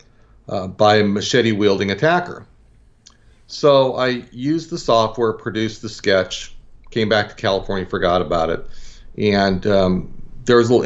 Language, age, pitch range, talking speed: English, 40-59, 95-115 Hz, 145 wpm